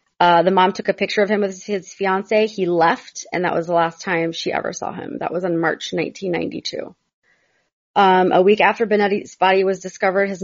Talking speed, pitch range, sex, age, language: 215 wpm, 170-200 Hz, female, 30-49, English